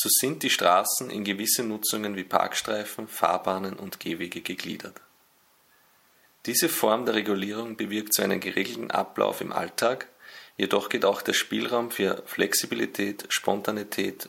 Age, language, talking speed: 30-49, German, 135 wpm